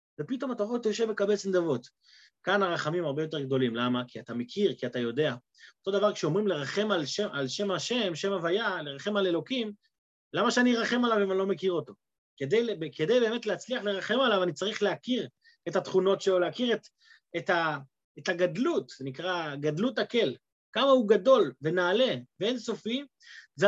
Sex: male